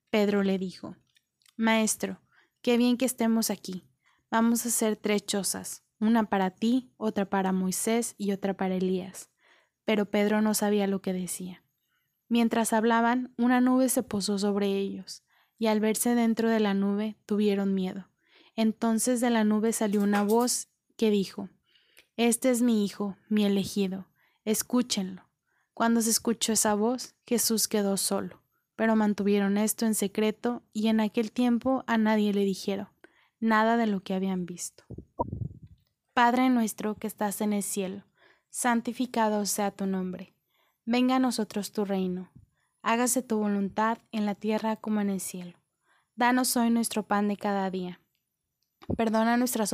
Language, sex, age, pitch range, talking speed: Spanish, female, 20-39, 195-230 Hz, 150 wpm